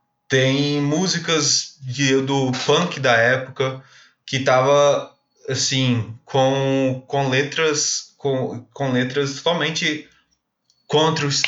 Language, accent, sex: Portuguese, Brazilian, male